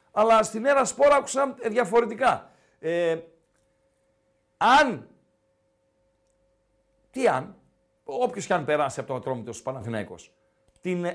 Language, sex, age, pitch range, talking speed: Greek, male, 50-69, 155-235 Hz, 110 wpm